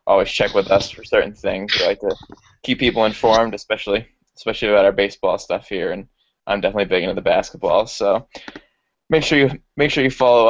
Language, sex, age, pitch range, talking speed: English, male, 20-39, 100-120 Hz, 200 wpm